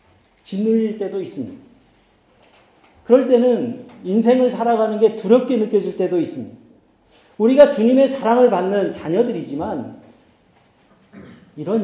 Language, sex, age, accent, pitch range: Korean, male, 40-59, native, 150-235 Hz